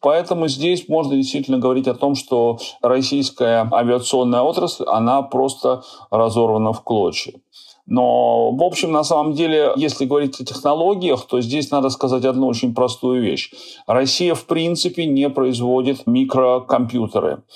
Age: 40-59